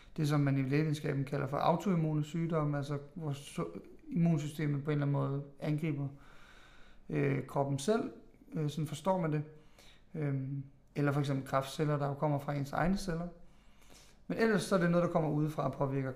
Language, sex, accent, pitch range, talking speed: Danish, male, native, 145-165 Hz, 165 wpm